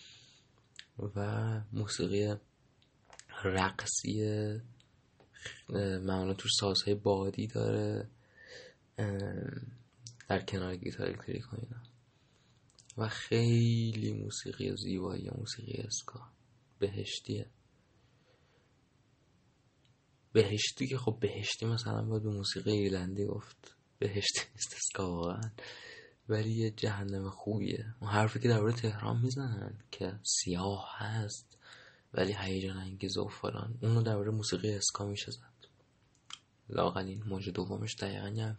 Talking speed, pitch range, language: 100 wpm, 100-125 Hz, Persian